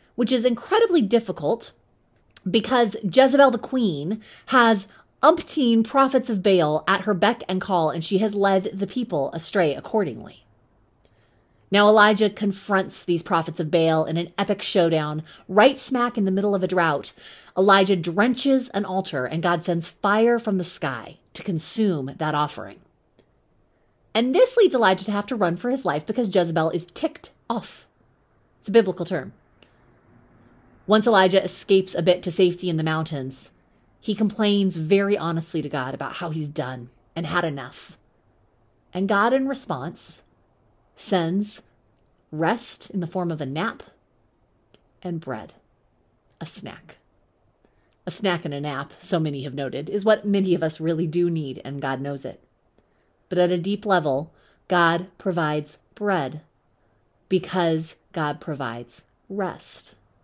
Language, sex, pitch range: English, female, 150-205 Hz